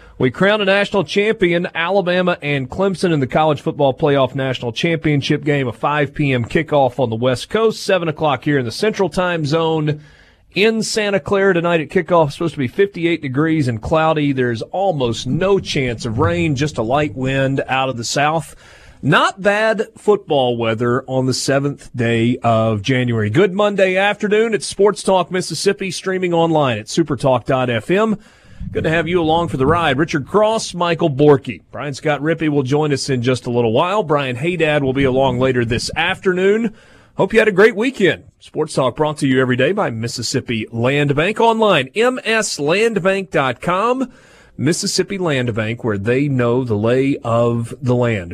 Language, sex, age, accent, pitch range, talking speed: English, male, 30-49, American, 130-185 Hz, 175 wpm